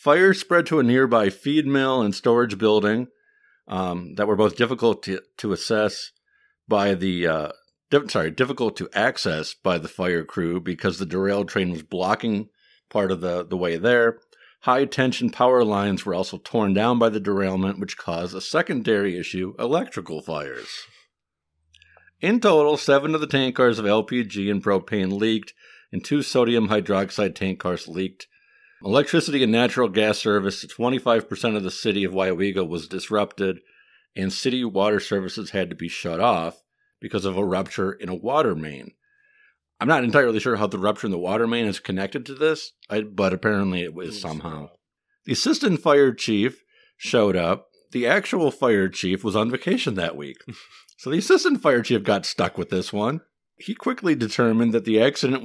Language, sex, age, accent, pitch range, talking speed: English, male, 50-69, American, 95-130 Hz, 175 wpm